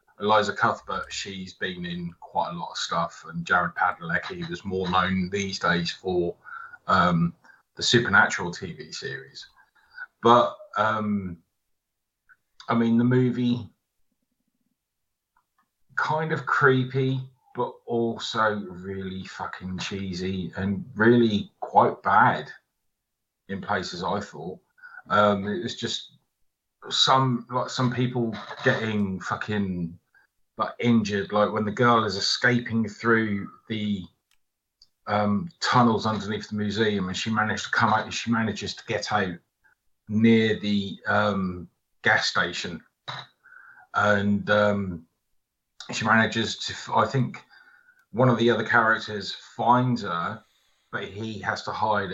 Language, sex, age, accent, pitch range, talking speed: English, male, 30-49, British, 100-125 Hz, 125 wpm